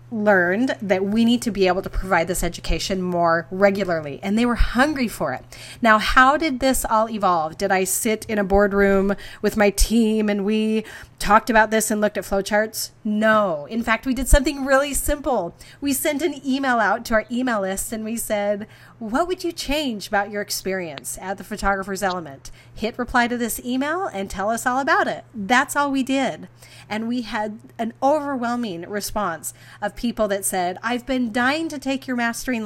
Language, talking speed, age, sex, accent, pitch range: English, 195 wpm, 30-49, female, American, 200-255 Hz